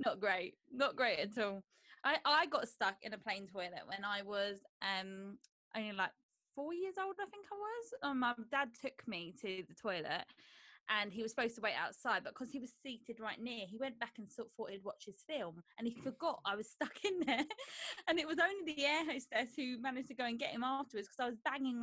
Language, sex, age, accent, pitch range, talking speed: English, female, 20-39, British, 215-305 Hz, 235 wpm